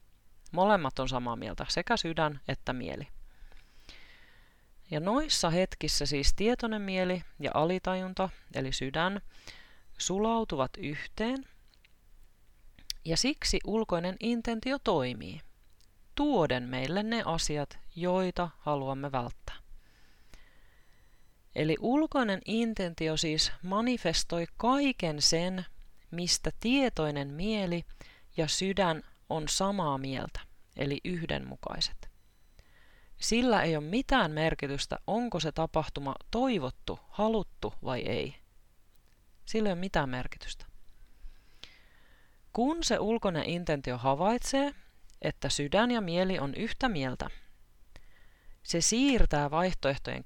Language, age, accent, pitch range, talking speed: Finnish, 30-49, native, 135-210 Hz, 95 wpm